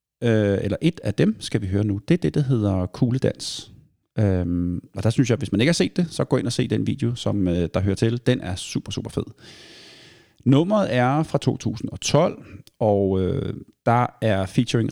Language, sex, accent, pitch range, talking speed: Danish, male, native, 95-125 Hz, 215 wpm